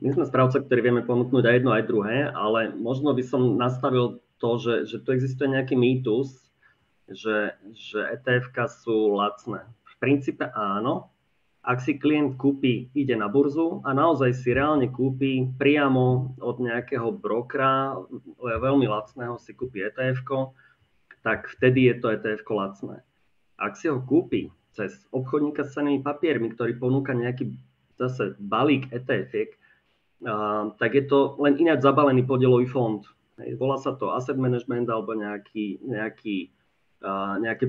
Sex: male